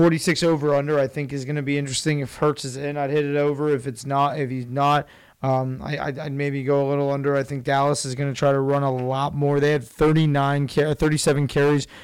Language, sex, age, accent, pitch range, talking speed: English, male, 20-39, American, 140-155 Hz, 250 wpm